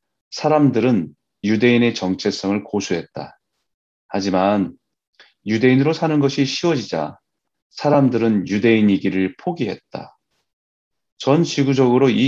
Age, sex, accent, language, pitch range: 30-49, male, native, Korean, 95-140 Hz